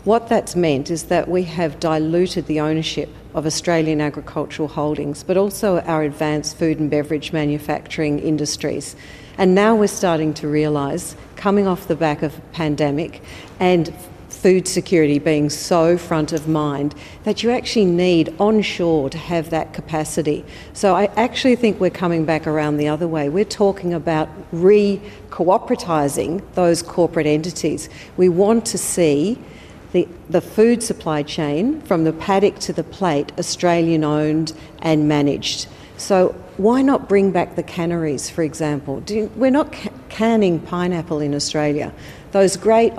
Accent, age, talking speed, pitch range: Australian, 50-69, 150 wpm, 155-185 Hz